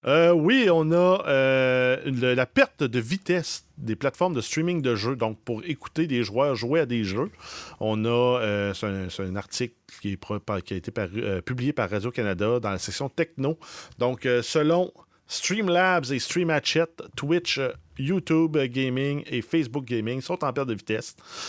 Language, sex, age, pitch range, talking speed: French, male, 40-59, 110-150 Hz, 180 wpm